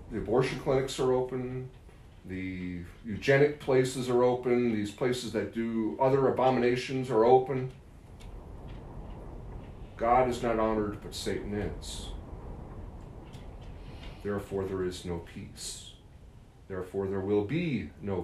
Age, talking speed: 40-59, 115 wpm